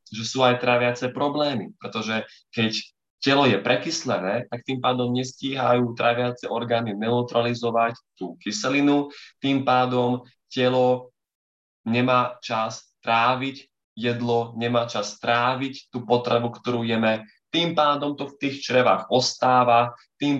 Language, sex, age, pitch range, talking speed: Slovak, male, 20-39, 110-125 Hz, 120 wpm